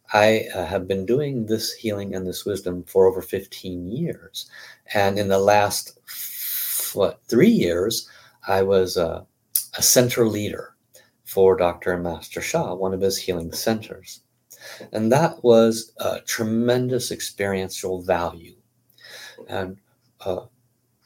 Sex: male